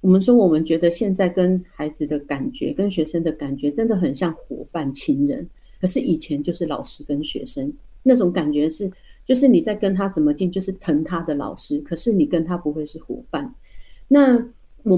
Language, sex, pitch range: Chinese, female, 155-215 Hz